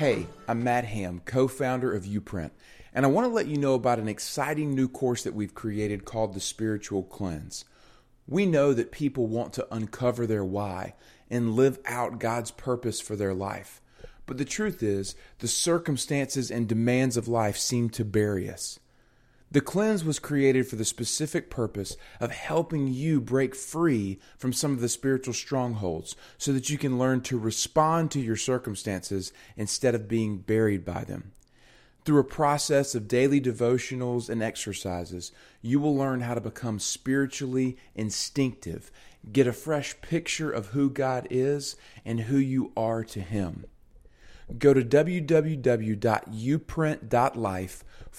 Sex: male